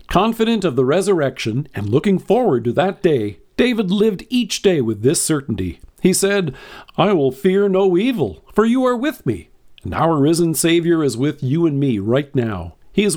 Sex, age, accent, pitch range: male, 50-69, American, 120-185 Hz